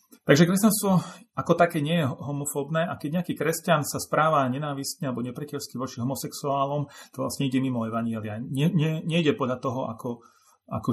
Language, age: Slovak, 40-59